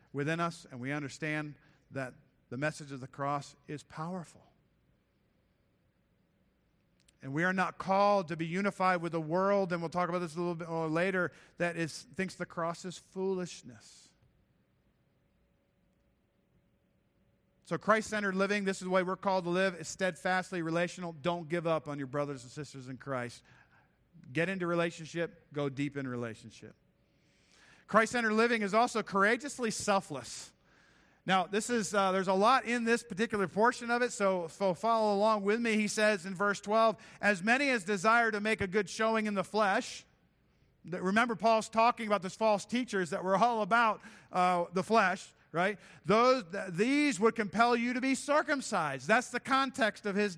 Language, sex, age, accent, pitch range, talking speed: English, male, 50-69, American, 165-220 Hz, 170 wpm